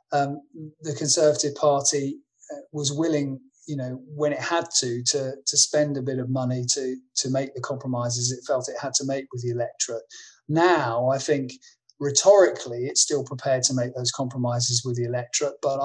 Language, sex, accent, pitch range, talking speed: English, male, British, 125-150 Hz, 180 wpm